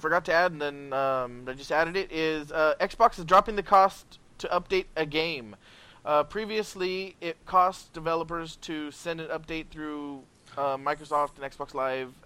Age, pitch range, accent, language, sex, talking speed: 20-39, 135-165 Hz, American, English, male, 175 wpm